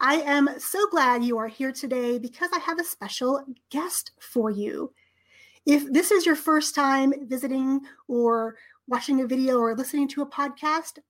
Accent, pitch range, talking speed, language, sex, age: American, 240-300 Hz, 175 wpm, English, female, 30-49